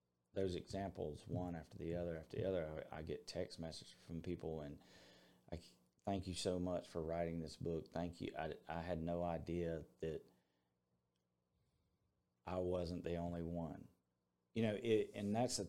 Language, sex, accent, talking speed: English, male, American, 170 wpm